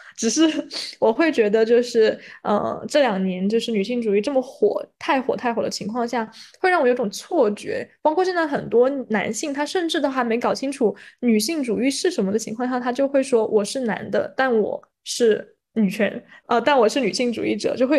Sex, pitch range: female, 215-280 Hz